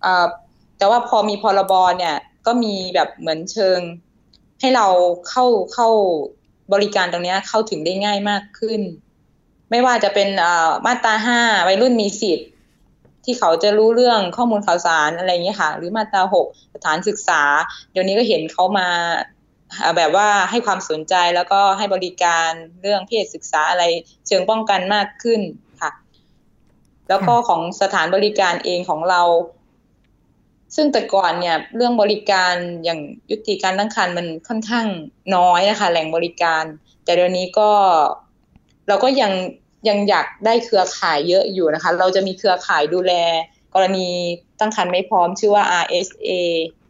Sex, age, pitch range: female, 20-39, 175-220 Hz